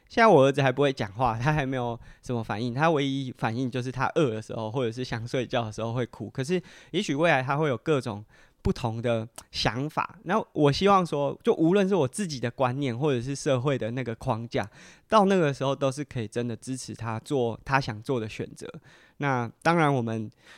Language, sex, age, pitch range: Chinese, male, 20-39, 120-155 Hz